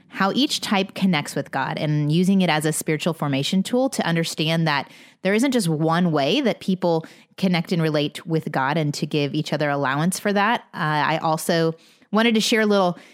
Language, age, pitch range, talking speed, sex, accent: English, 20-39, 155-200 Hz, 205 wpm, female, American